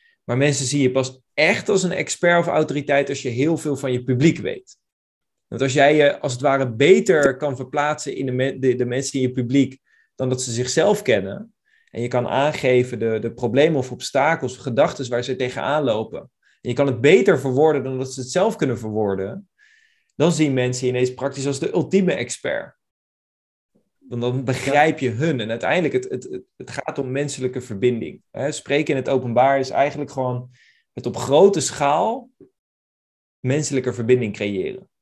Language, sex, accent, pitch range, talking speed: Dutch, male, Dutch, 125-150 Hz, 185 wpm